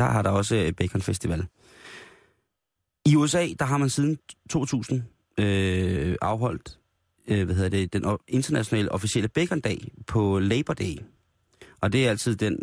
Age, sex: 30-49, male